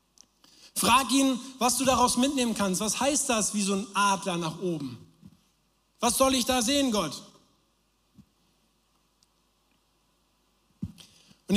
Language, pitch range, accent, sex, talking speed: German, 180-225 Hz, German, male, 120 wpm